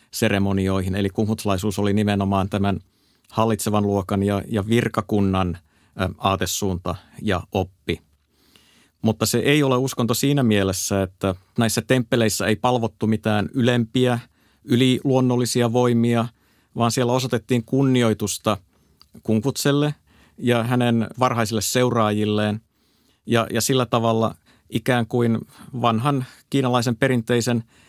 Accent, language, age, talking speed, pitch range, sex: native, Finnish, 50-69, 105 wpm, 105-125 Hz, male